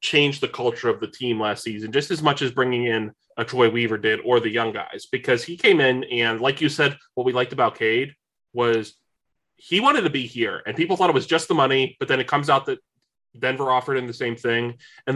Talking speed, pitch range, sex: 245 wpm, 115-145 Hz, male